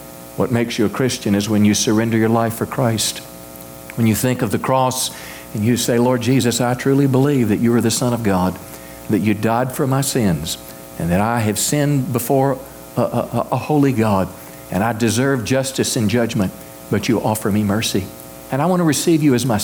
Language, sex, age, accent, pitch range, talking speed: English, male, 50-69, American, 85-130 Hz, 215 wpm